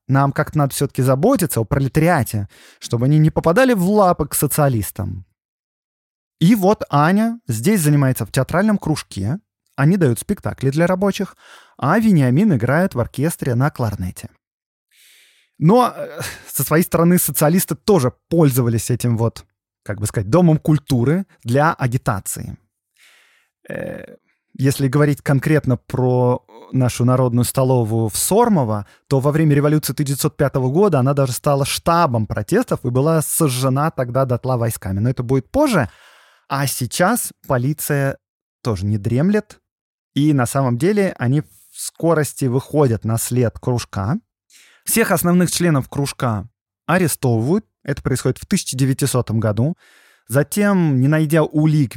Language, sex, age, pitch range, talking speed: Russian, male, 20-39, 120-165 Hz, 130 wpm